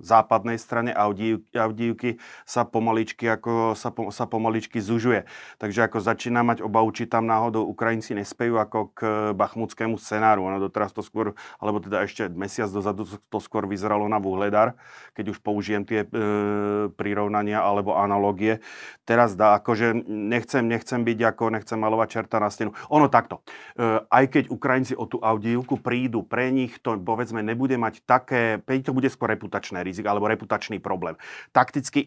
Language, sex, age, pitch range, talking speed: Slovak, male, 40-59, 105-115 Hz, 160 wpm